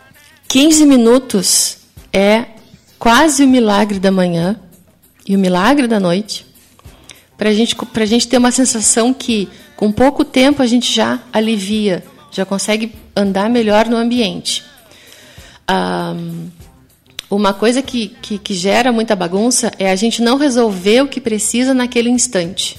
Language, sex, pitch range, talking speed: Portuguese, female, 190-240 Hz, 140 wpm